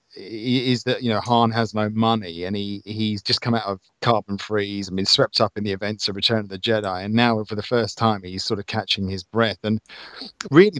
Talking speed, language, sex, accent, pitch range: 240 wpm, English, male, British, 100-125 Hz